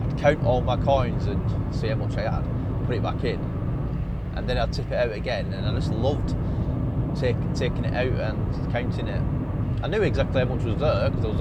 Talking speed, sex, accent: 220 wpm, male, British